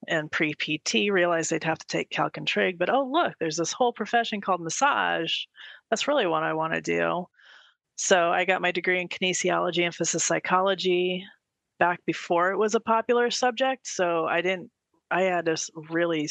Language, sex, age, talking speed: English, female, 30-49, 185 wpm